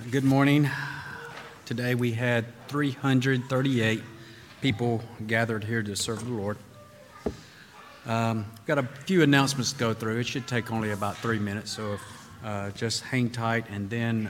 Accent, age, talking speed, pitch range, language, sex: American, 40-59, 145 wpm, 105-125 Hz, English, male